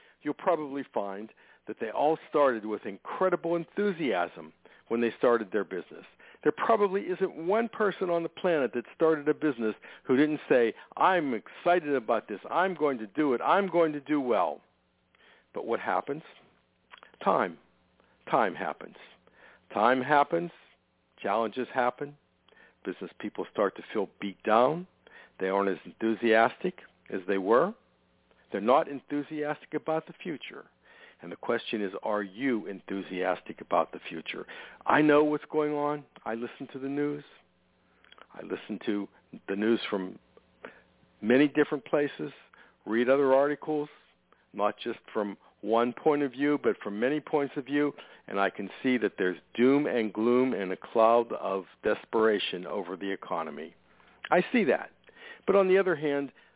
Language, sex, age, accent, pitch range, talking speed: English, male, 60-79, American, 110-155 Hz, 155 wpm